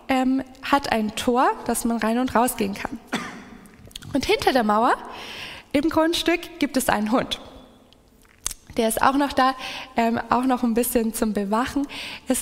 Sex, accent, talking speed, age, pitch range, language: female, German, 160 wpm, 20-39, 235-310 Hz, German